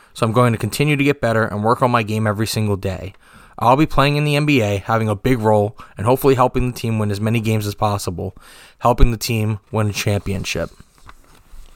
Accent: American